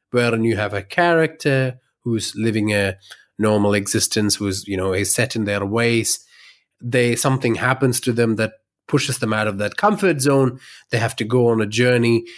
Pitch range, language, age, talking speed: 105-135 Hz, English, 30-49, 185 wpm